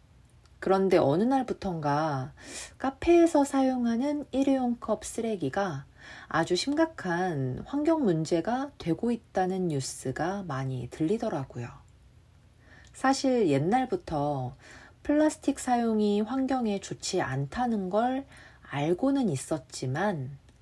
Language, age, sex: Korean, 40-59, female